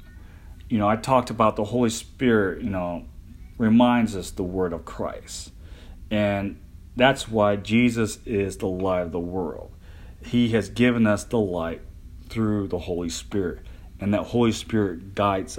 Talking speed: 160 wpm